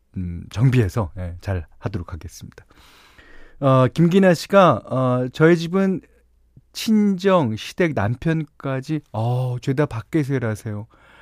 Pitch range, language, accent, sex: 100-145 Hz, Korean, native, male